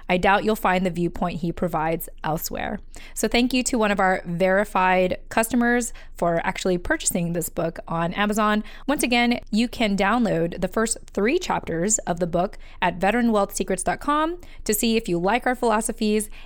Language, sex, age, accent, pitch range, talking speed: English, female, 20-39, American, 180-230 Hz, 170 wpm